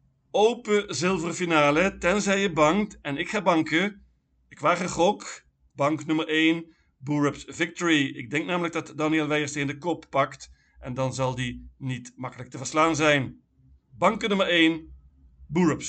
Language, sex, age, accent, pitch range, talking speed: Dutch, male, 50-69, Dutch, 130-160 Hz, 160 wpm